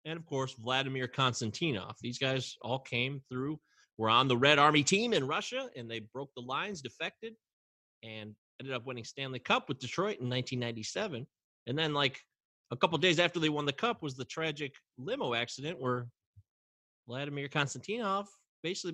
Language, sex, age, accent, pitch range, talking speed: English, male, 30-49, American, 120-170 Hz, 175 wpm